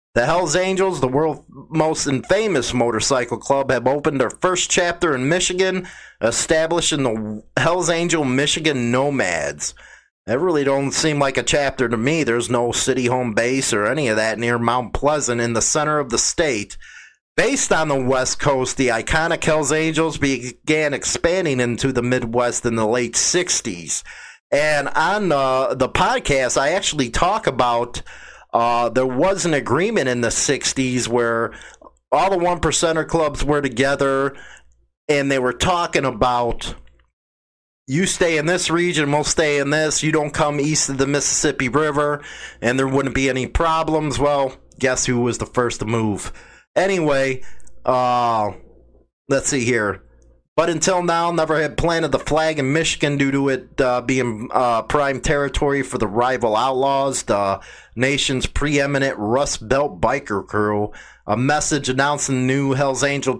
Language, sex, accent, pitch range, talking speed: English, male, American, 120-155 Hz, 160 wpm